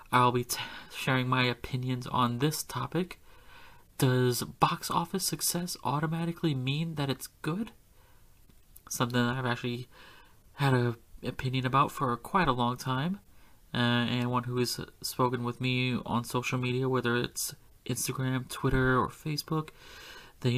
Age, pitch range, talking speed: 30-49, 125-145 Hz, 145 wpm